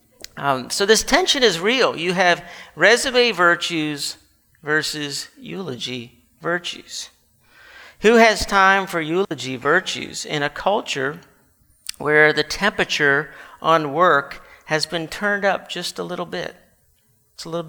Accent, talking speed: American, 130 wpm